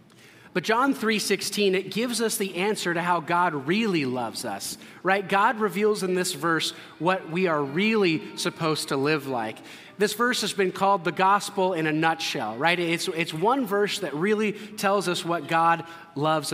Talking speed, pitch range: 180 wpm, 165-205 Hz